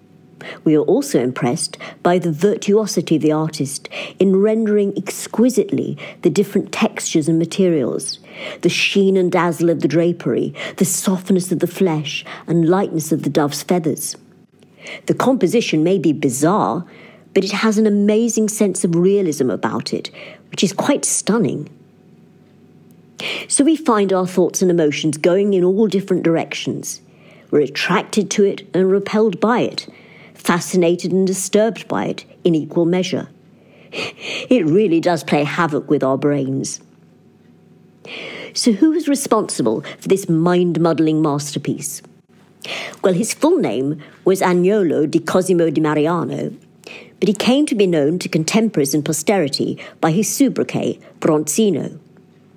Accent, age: British, 50-69